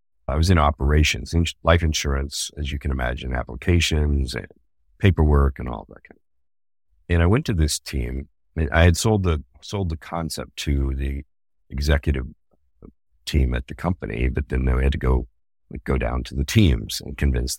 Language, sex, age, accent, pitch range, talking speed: English, male, 50-69, American, 70-85 Hz, 180 wpm